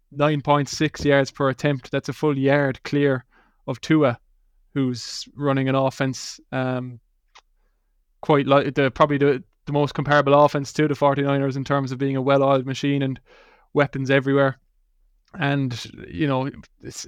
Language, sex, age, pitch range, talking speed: English, male, 20-39, 125-140 Hz, 150 wpm